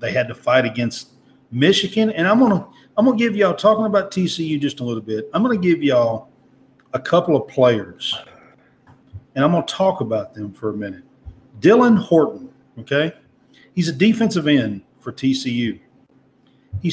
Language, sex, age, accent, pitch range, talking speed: English, male, 40-59, American, 125-200 Hz, 180 wpm